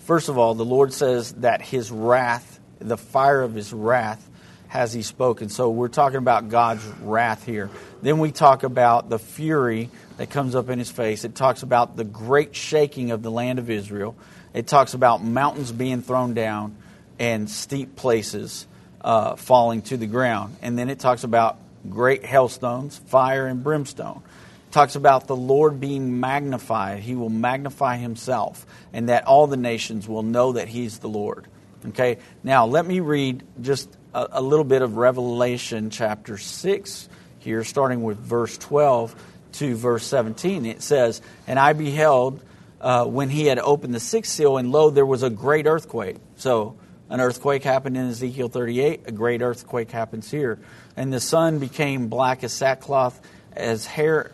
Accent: American